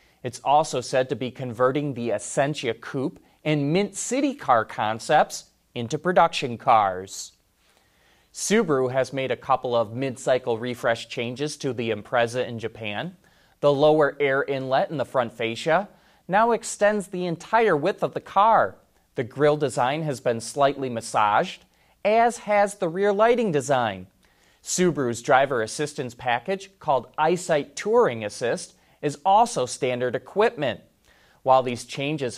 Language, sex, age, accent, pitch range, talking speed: English, male, 30-49, American, 120-180 Hz, 140 wpm